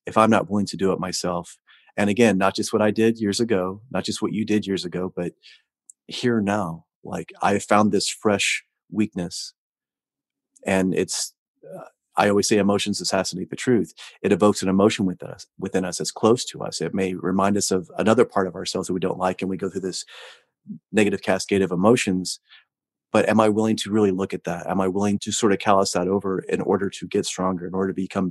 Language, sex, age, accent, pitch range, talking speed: English, male, 30-49, American, 95-105 Hz, 215 wpm